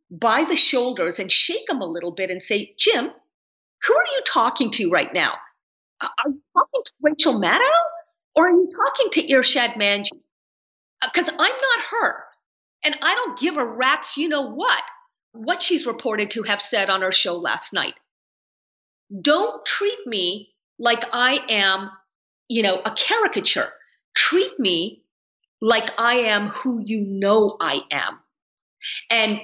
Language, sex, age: English, female, 40-59